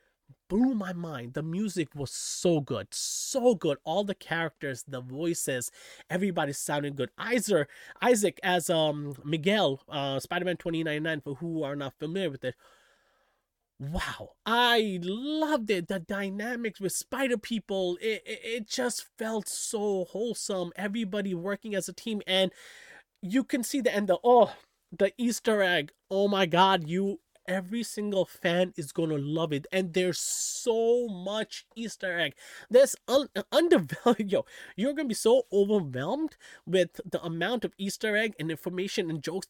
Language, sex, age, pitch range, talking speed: English, male, 30-49, 165-230 Hz, 145 wpm